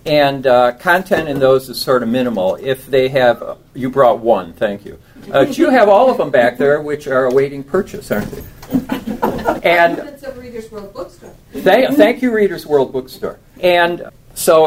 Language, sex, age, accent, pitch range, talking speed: English, male, 50-69, American, 115-155 Hz, 185 wpm